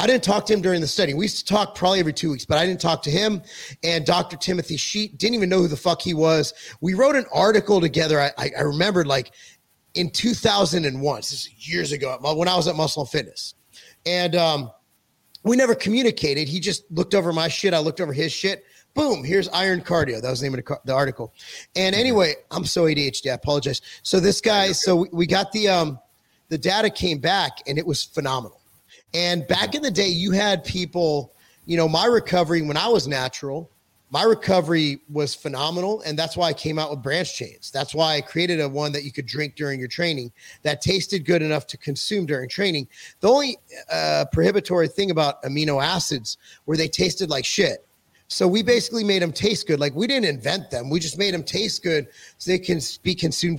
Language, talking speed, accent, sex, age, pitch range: English, 220 wpm, American, male, 30-49, 145-190 Hz